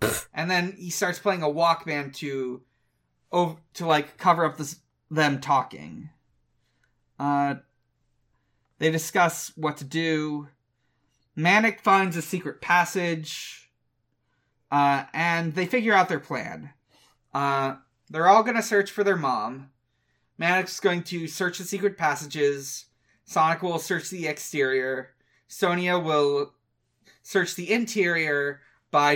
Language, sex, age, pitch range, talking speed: English, male, 20-39, 130-180 Hz, 125 wpm